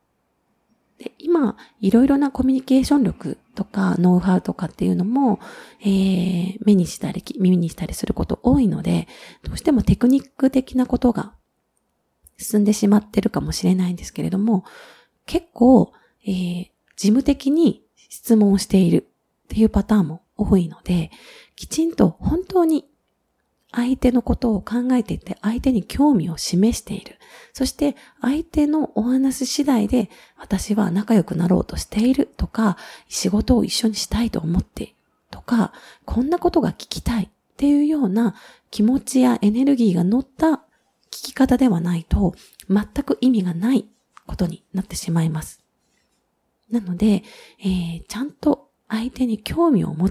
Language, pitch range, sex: Japanese, 195-265 Hz, female